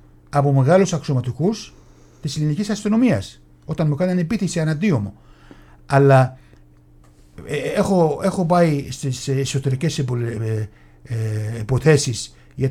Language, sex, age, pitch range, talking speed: Greek, male, 60-79, 110-185 Hz, 95 wpm